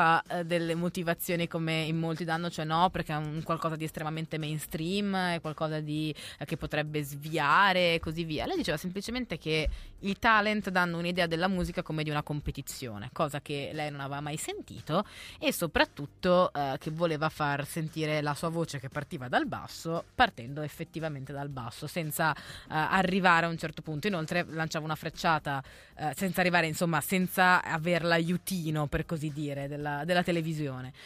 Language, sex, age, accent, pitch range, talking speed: Italian, female, 20-39, native, 145-175 Hz, 170 wpm